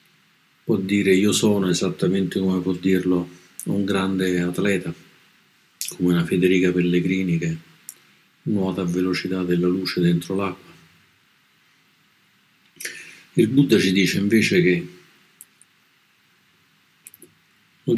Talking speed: 100 wpm